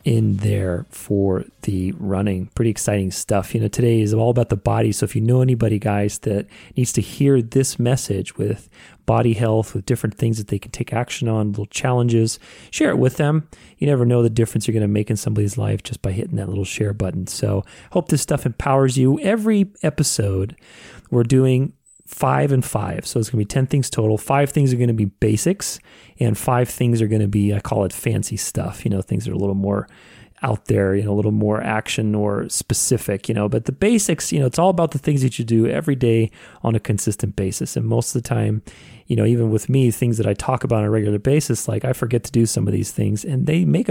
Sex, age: male, 30-49